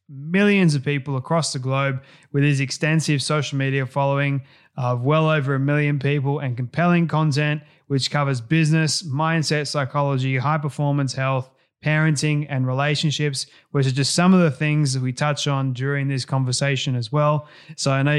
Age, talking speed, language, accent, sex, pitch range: 20-39, 170 wpm, English, Australian, male, 135-155 Hz